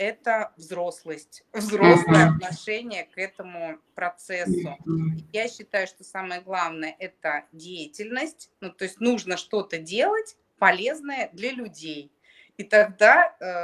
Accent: native